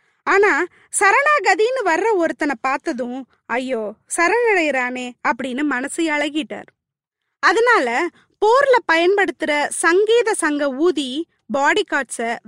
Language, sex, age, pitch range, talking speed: Tamil, female, 20-39, 260-370 Hz, 85 wpm